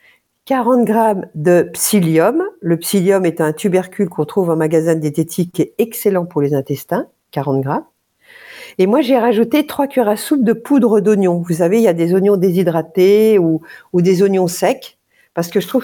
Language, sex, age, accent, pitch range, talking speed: French, female, 50-69, French, 160-215 Hz, 190 wpm